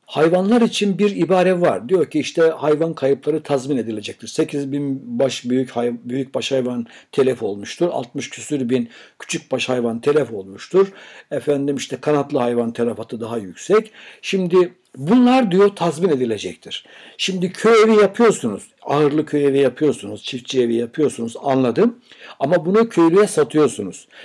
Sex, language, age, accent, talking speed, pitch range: male, Turkish, 60-79, native, 140 wpm, 130-180 Hz